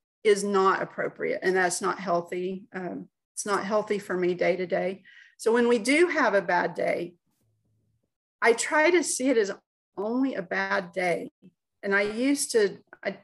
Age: 40-59